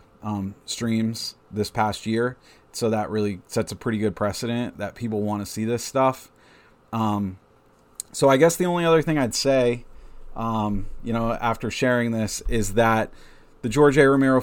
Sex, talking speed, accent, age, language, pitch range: male, 175 wpm, American, 30-49, English, 105-120 Hz